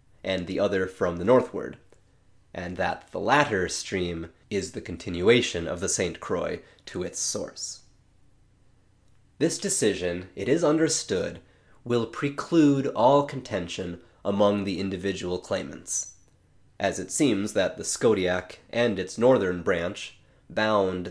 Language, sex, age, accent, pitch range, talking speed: English, male, 30-49, American, 90-115 Hz, 130 wpm